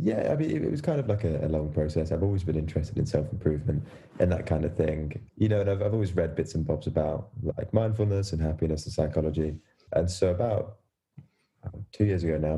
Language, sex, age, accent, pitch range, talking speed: English, male, 20-39, British, 80-95 Hz, 230 wpm